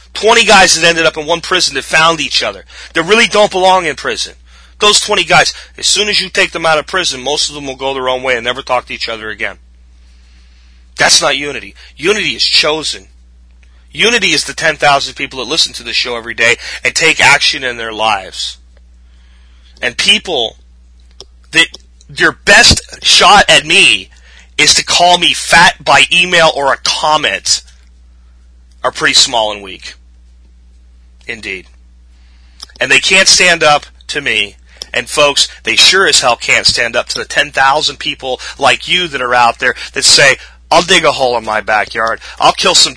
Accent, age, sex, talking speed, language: American, 30-49, male, 185 wpm, English